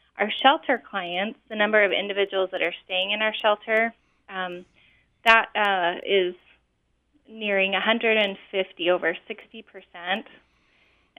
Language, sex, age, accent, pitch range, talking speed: English, female, 20-39, American, 190-220 Hz, 115 wpm